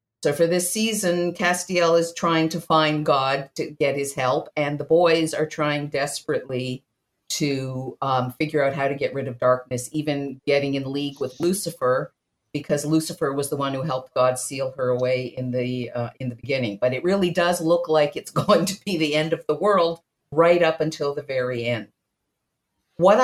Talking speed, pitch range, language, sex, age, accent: 190 wpm, 130-160 Hz, English, female, 50-69, American